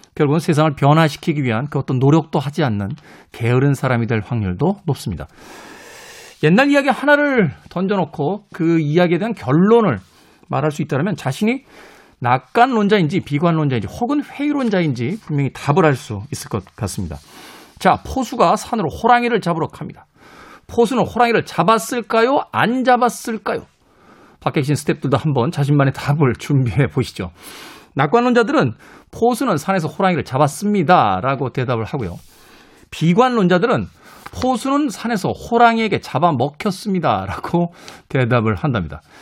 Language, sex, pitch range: Korean, male, 130-215 Hz